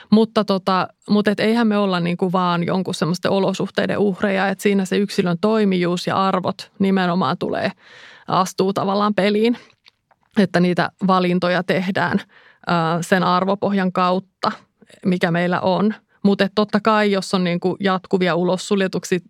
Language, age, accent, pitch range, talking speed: Finnish, 30-49, native, 180-200 Hz, 125 wpm